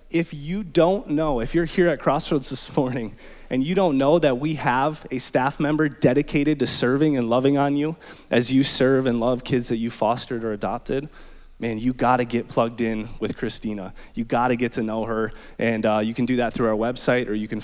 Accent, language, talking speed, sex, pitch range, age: American, English, 230 wpm, male, 120-155 Hz, 20-39